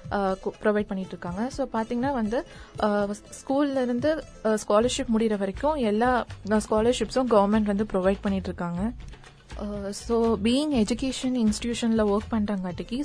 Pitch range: 200-235 Hz